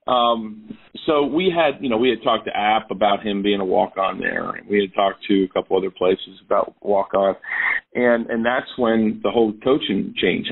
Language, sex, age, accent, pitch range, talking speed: English, male, 40-59, American, 100-115 Hz, 205 wpm